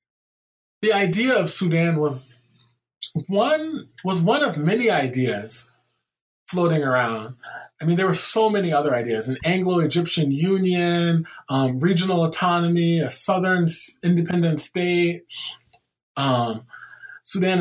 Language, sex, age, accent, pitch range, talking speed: English, male, 20-39, American, 150-190 Hz, 110 wpm